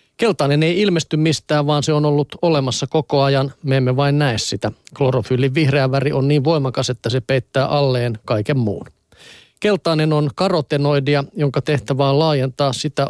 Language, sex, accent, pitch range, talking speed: Finnish, male, native, 130-150 Hz, 165 wpm